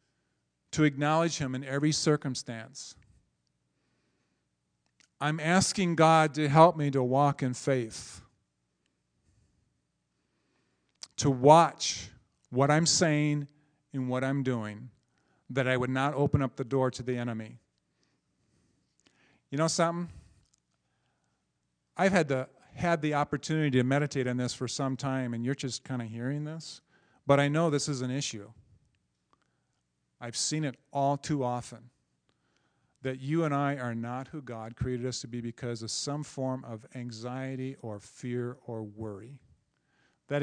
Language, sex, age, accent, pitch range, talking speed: English, male, 40-59, American, 105-145 Hz, 140 wpm